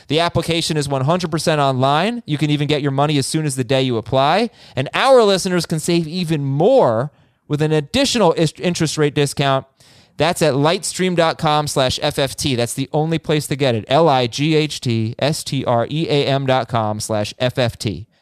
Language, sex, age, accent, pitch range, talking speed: English, male, 30-49, American, 120-160 Hz, 150 wpm